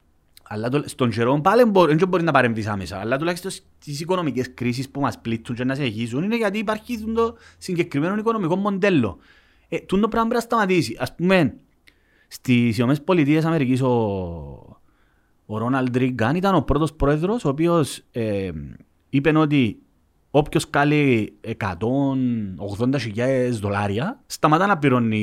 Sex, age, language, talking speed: male, 30-49, Greek, 140 wpm